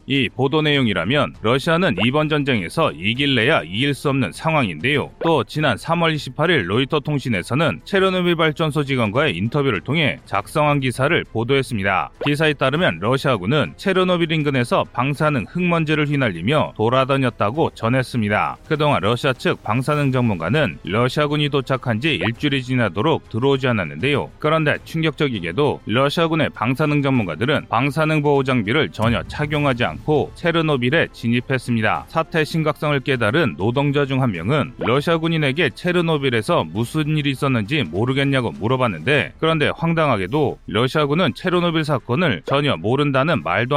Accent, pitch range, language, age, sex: native, 120-155 Hz, Korean, 30-49, male